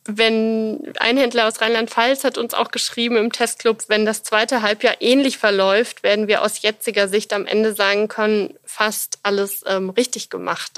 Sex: female